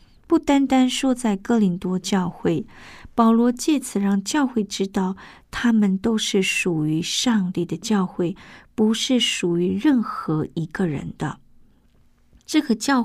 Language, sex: Chinese, female